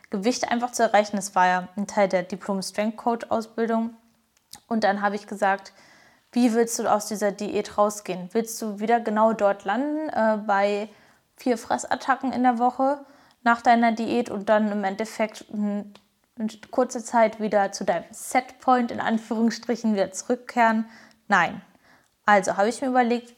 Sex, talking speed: female, 155 wpm